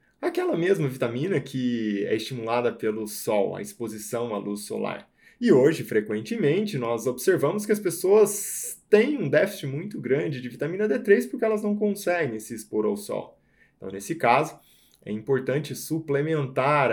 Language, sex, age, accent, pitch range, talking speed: Portuguese, male, 20-39, Brazilian, 110-150 Hz, 150 wpm